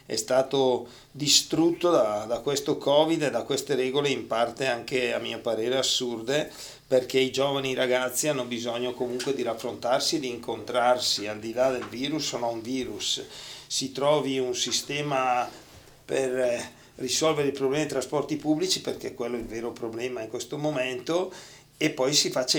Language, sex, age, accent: Italian, male, 40-59, native